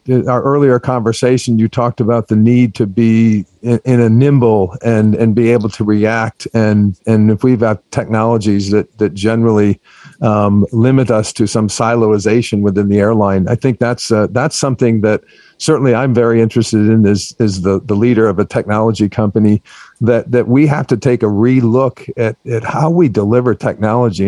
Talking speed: 180 wpm